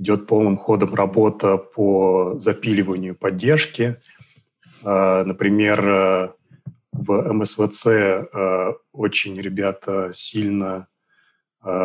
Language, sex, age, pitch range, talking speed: Russian, male, 30-49, 95-115 Hz, 65 wpm